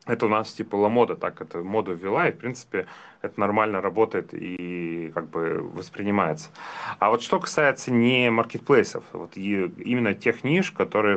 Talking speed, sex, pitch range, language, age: 165 wpm, male, 90-110 Hz, Russian, 30-49